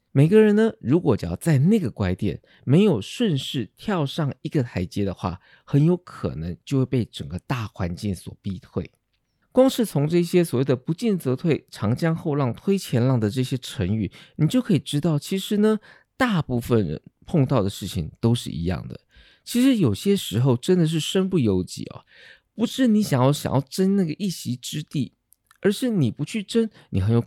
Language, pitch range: Chinese, 110-180 Hz